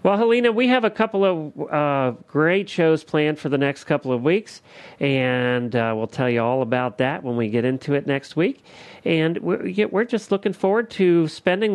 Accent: American